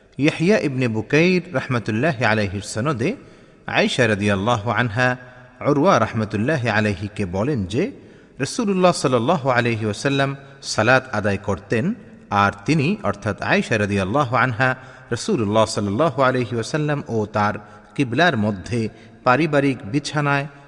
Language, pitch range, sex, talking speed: Bengali, 105-150 Hz, male, 105 wpm